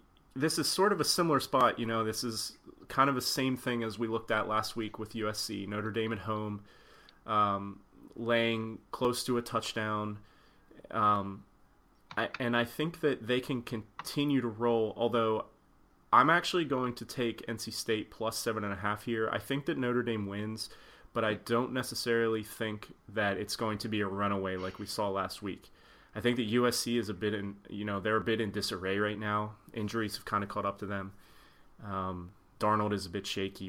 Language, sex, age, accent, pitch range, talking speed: English, male, 30-49, American, 100-120 Hz, 200 wpm